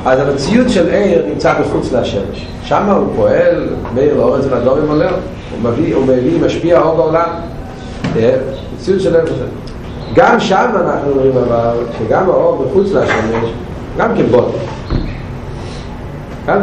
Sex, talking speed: male, 100 wpm